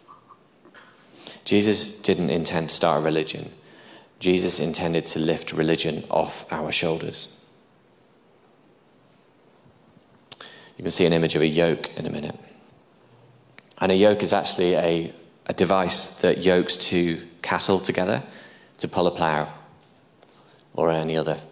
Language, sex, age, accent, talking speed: English, male, 20-39, British, 130 wpm